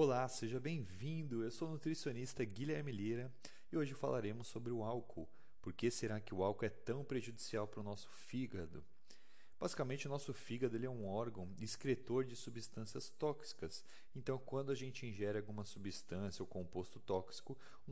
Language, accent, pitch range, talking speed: Portuguese, Brazilian, 100-130 Hz, 170 wpm